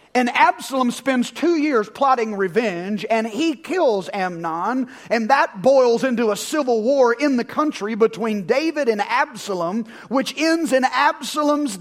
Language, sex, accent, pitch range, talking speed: English, male, American, 195-270 Hz, 145 wpm